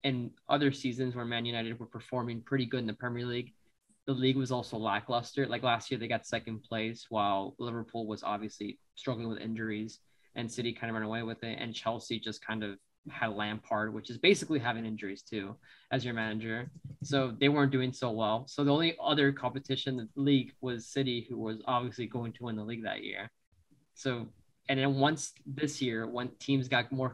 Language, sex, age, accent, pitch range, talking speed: English, male, 10-29, American, 115-135 Hz, 205 wpm